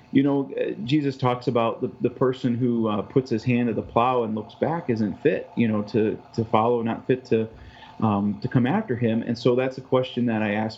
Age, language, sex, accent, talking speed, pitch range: 30-49, English, male, American, 235 wpm, 110-130 Hz